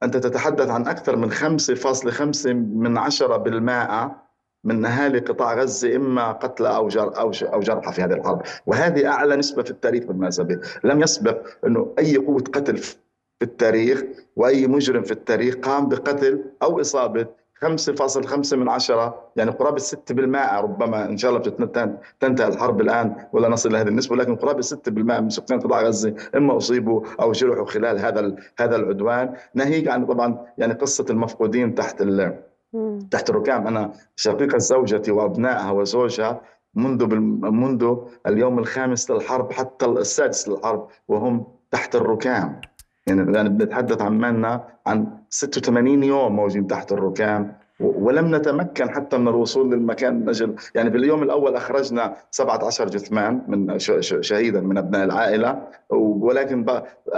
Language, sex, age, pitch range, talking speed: Arabic, male, 50-69, 110-135 Hz, 145 wpm